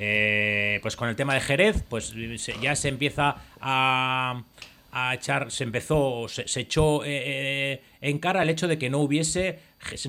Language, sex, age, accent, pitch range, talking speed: Spanish, male, 40-59, Spanish, 115-165 Hz, 165 wpm